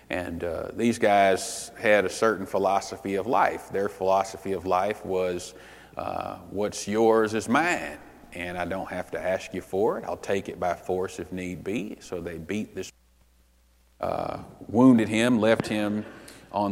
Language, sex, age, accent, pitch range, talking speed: English, male, 40-59, American, 95-115 Hz, 170 wpm